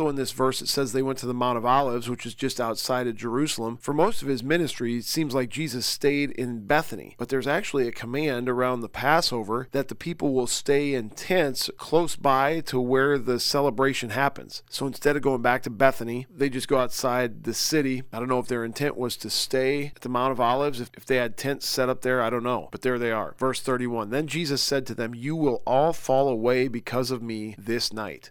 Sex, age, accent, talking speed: male, 40-59, American, 235 wpm